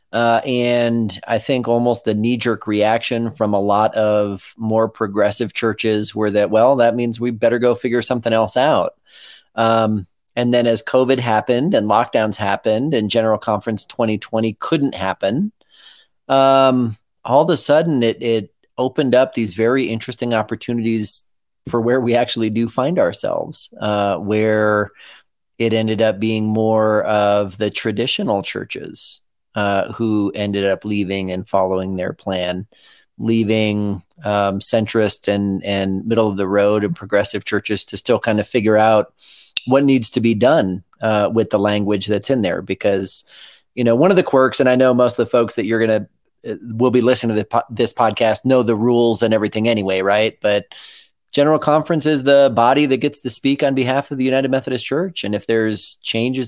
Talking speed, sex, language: 175 wpm, male, English